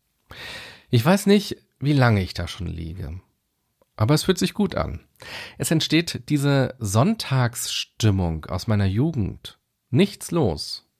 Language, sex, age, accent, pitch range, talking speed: German, male, 40-59, German, 105-140 Hz, 130 wpm